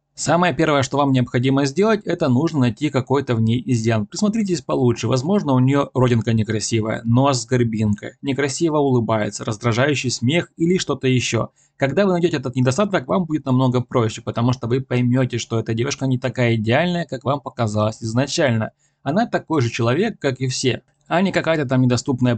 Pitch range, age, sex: 115-150 Hz, 20-39, male